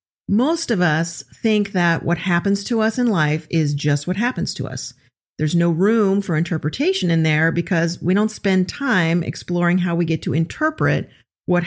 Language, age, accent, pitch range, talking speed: English, 40-59, American, 155-205 Hz, 185 wpm